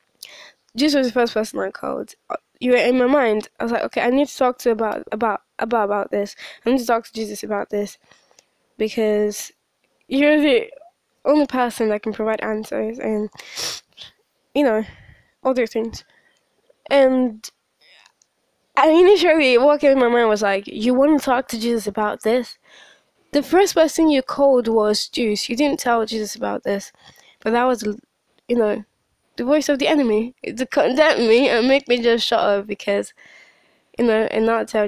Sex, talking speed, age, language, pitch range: female, 180 wpm, 10-29, English, 215-270 Hz